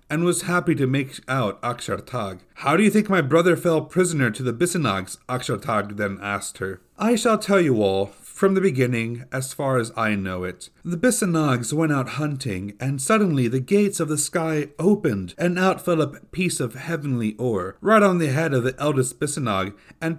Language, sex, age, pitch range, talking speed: English, male, 30-49, 125-170 Hz, 195 wpm